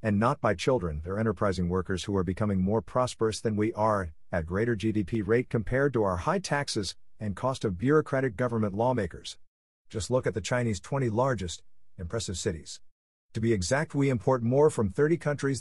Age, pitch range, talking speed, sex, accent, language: 50-69, 95-130 Hz, 185 wpm, male, American, English